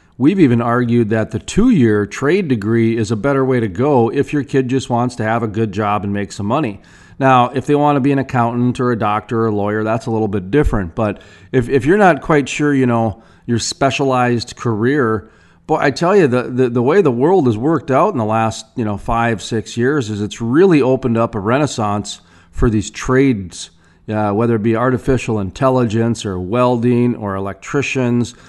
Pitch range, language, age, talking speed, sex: 110-140 Hz, English, 40-59, 210 wpm, male